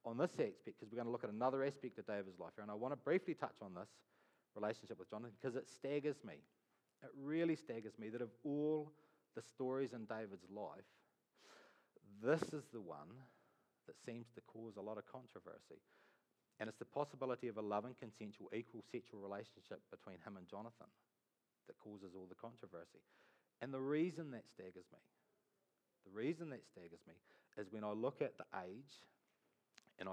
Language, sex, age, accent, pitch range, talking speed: English, male, 40-59, Australian, 105-145 Hz, 185 wpm